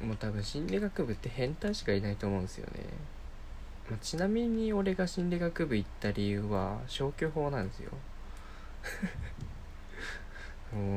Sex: male